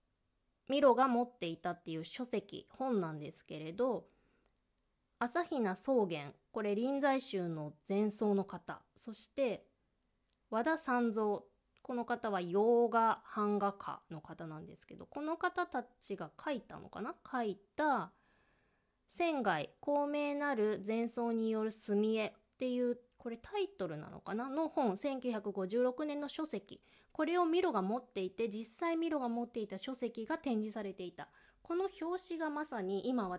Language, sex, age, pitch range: Japanese, female, 20-39, 190-255 Hz